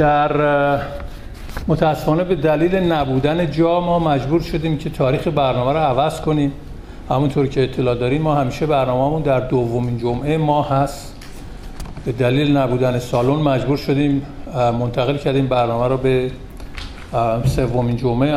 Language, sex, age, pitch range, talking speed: Persian, male, 50-69, 130-170 Hz, 130 wpm